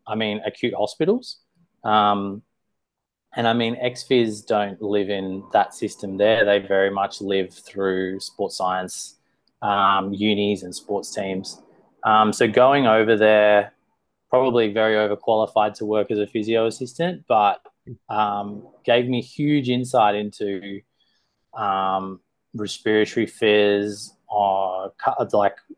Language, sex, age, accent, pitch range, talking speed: English, male, 20-39, Australian, 105-120 Hz, 125 wpm